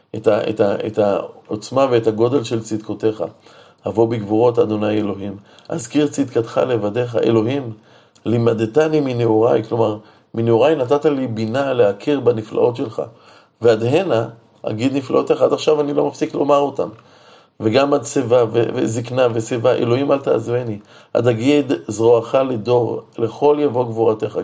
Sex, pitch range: male, 110-130 Hz